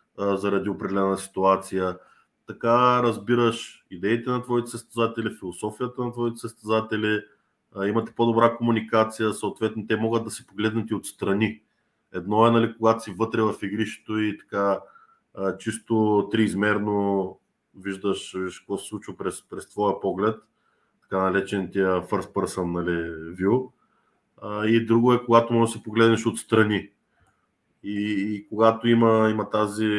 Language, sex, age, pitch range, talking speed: English, male, 20-39, 100-115 Hz, 130 wpm